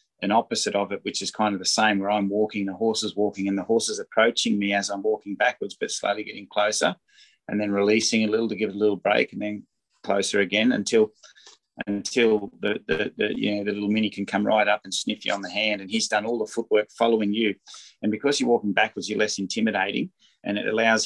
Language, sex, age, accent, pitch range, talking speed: English, male, 30-49, Australian, 100-110 Hz, 240 wpm